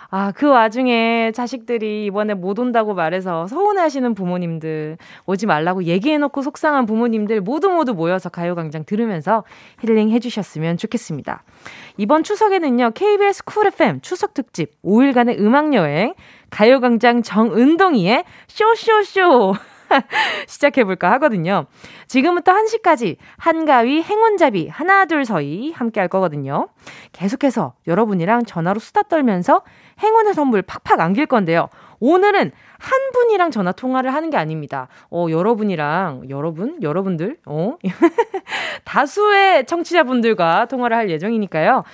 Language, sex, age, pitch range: Korean, female, 20-39, 185-300 Hz